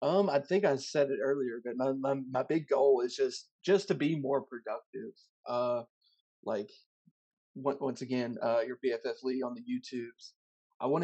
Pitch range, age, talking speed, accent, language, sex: 130-160 Hz, 30-49, 185 wpm, American, English, male